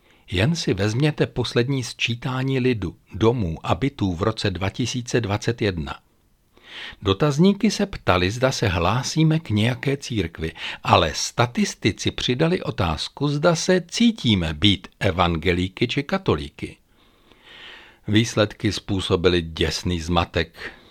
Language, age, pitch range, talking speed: Czech, 60-79, 90-140 Hz, 105 wpm